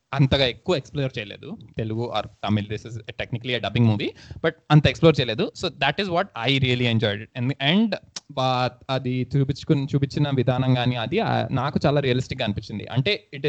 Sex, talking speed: male, 160 wpm